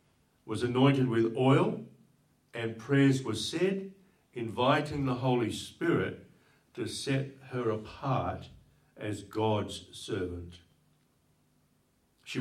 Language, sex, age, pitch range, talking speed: English, male, 60-79, 100-135 Hz, 95 wpm